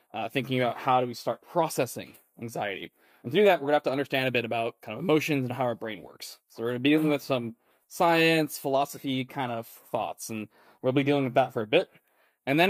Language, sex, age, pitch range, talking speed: English, male, 20-39, 120-140 Hz, 250 wpm